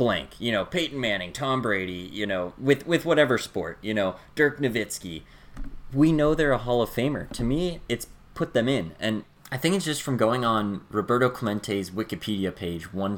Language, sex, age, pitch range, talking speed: English, male, 20-39, 95-125 Hz, 195 wpm